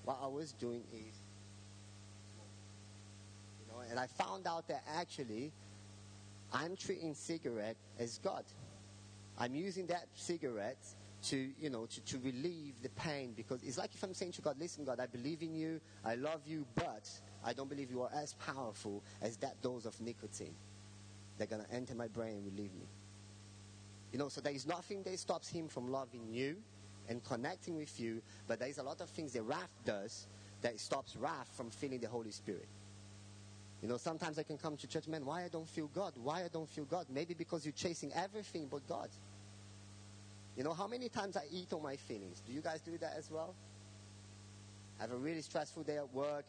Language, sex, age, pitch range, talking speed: English, male, 30-49, 105-150 Hz, 200 wpm